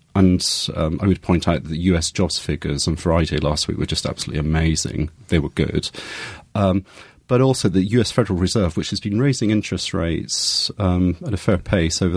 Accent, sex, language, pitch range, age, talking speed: British, male, English, 85-100 Hz, 30-49, 200 wpm